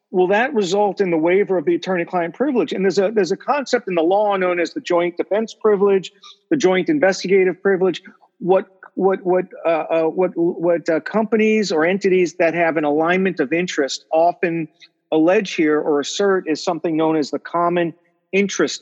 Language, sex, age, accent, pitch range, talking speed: English, male, 40-59, American, 160-190 Hz, 185 wpm